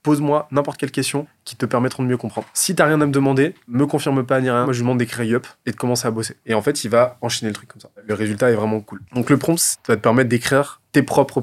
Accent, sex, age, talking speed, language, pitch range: French, male, 20-39, 300 wpm, French, 120-145 Hz